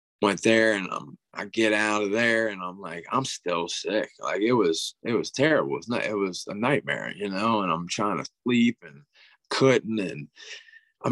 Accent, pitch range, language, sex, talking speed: American, 100-120 Hz, English, male, 210 wpm